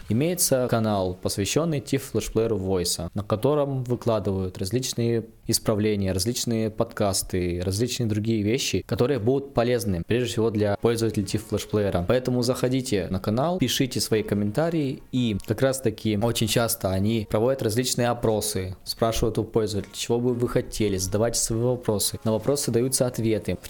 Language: Russian